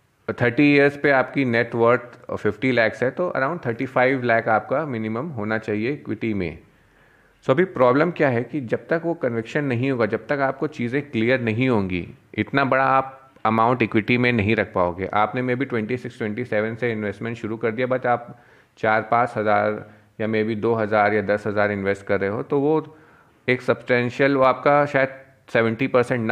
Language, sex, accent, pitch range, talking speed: Hindi, male, native, 105-130 Hz, 190 wpm